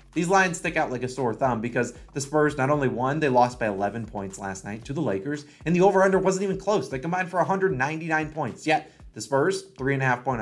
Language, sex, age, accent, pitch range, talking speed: English, male, 30-49, American, 120-165 Hz, 250 wpm